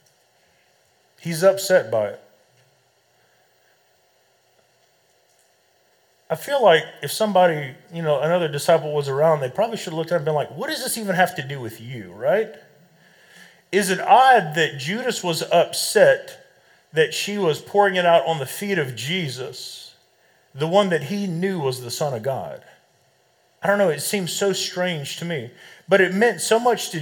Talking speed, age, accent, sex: 175 wpm, 40-59, American, male